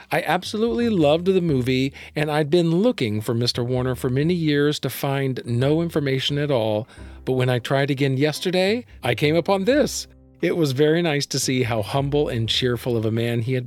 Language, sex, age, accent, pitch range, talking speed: English, male, 50-69, American, 115-150 Hz, 200 wpm